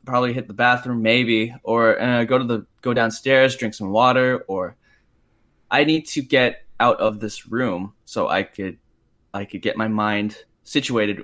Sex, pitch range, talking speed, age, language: male, 115-135 Hz, 175 wpm, 10-29, English